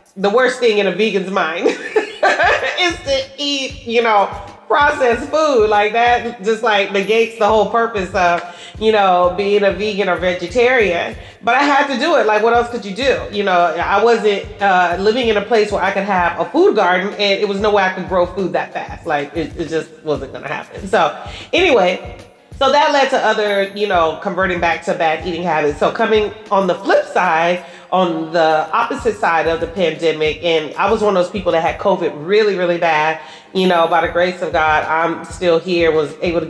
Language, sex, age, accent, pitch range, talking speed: English, female, 30-49, American, 170-215 Hz, 215 wpm